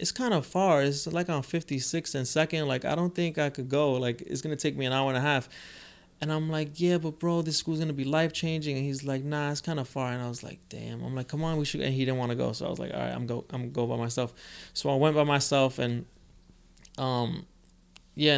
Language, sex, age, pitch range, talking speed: English, male, 20-39, 120-150 Hz, 270 wpm